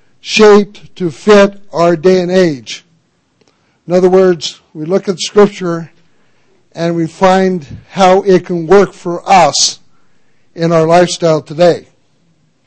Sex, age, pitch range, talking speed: male, 60-79, 155-195 Hz, 130 wpm